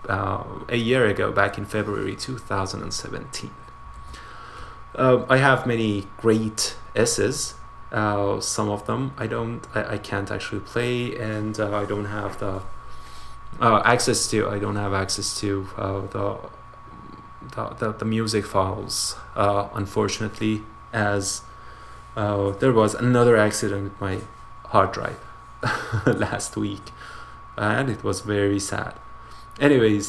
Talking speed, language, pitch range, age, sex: 135 wpm, English, 100-115 Hz, 20-39, male